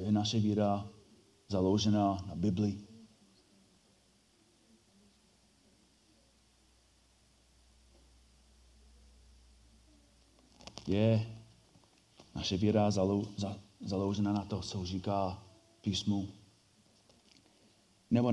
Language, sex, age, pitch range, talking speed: Czech, male, 40-59, 95-110 Hz, 50 wpm